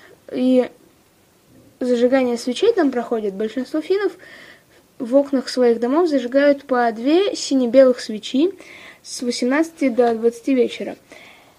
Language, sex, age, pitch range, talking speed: Russian, female, 20-39, 235-300 Hz, 110 wpm